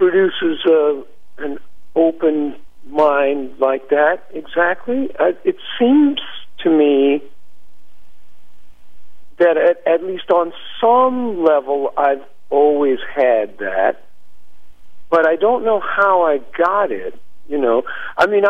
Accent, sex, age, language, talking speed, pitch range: American, male, 50-69, English, 110 wpm, 125-195 Hz